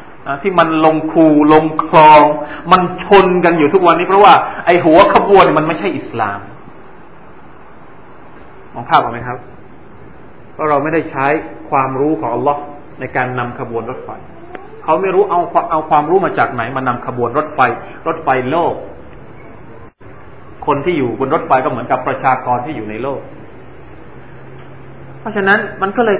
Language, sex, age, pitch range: Thai, male, 20-39, 135-190 Hz